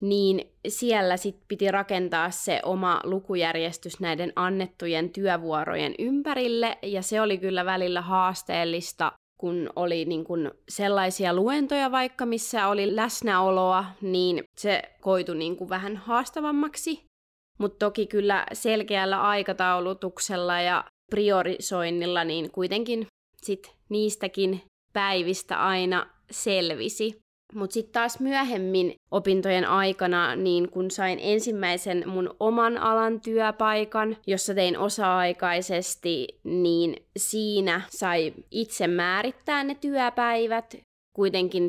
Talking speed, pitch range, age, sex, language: 105 wpm, 180-220 Hz, 20-39, female, Finnish